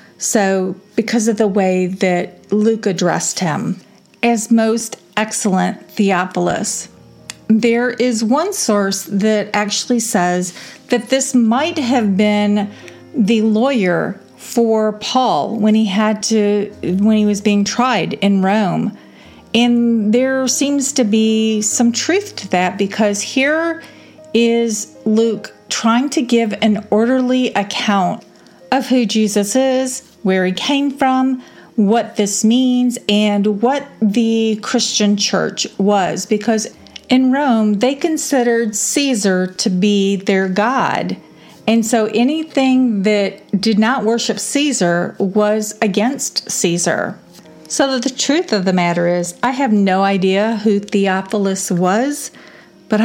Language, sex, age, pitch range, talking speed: English, female, 40-59, 200-245 Hz, 125 wpm